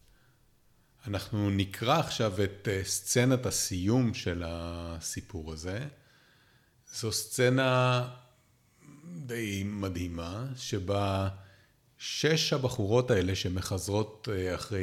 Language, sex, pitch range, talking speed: Hebrew, male, 95-125 Hz, 75 wpm